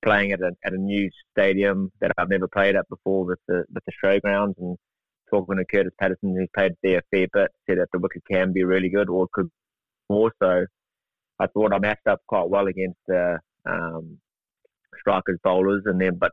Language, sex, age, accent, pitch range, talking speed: English, male, 20-39, Australian, 95-105 Hz, 210 wpm